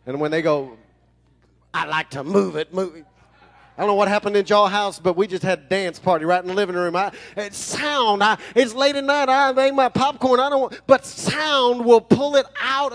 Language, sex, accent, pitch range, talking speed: English, male, American, 170-215 Hz, 240 wpm